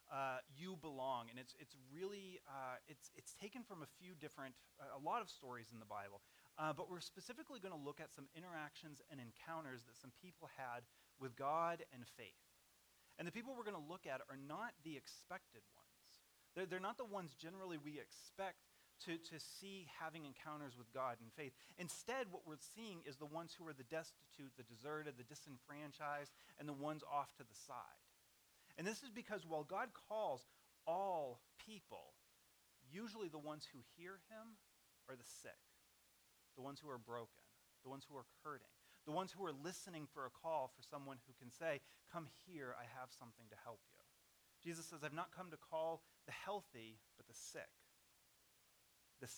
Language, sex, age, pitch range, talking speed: English, male, 30-49, 130-175 Hz, 190 wpm